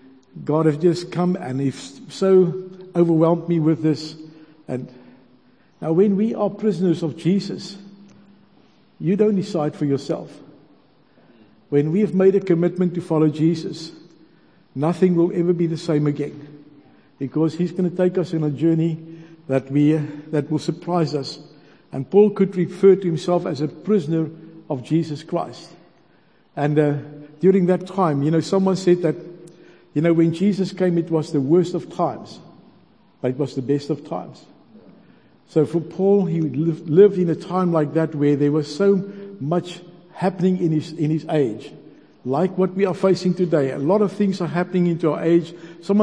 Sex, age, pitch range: male, 60-79, 150-180 Hz